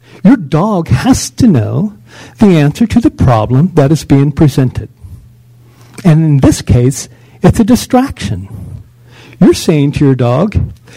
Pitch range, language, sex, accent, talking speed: 120-175 Hz, English, male, American, 140 wpm